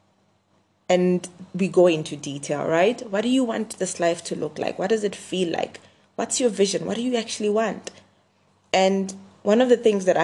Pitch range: 160-200 Hz